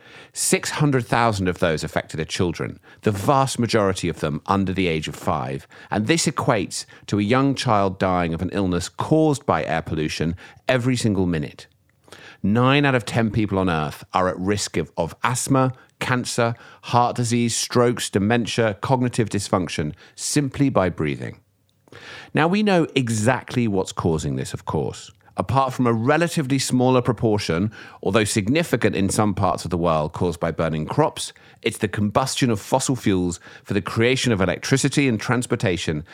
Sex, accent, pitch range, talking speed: male, British, 90-130 Hz, 160 wpm